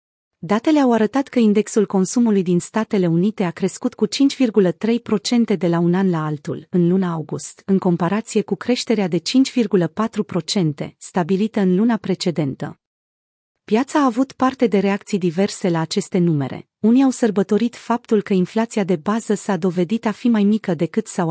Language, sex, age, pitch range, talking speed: Romanian, female, 30-49, 180-220 Hz, 165 wpm